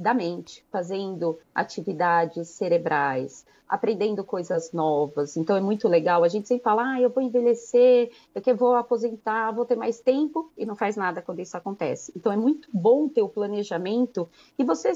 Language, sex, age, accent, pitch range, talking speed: Portuguese, female, 30-49, Brazilian, 180-240 Hz, 175 wpm